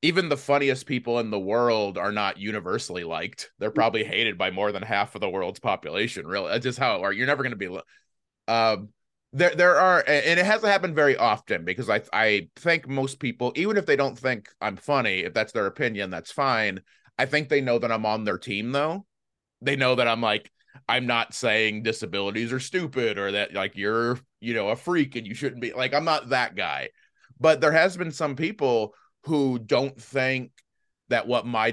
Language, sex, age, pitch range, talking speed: English, male, 30-49, 105-145 Hz, 215 wpm